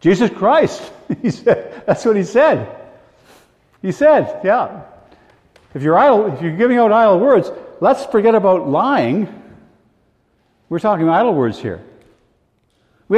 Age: 50-69